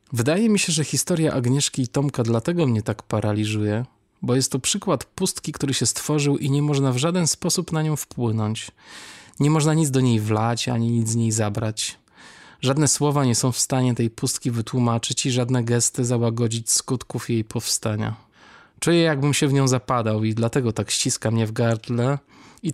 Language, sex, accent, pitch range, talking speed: Polish, male, native, 115-140 Hz, 185 wpm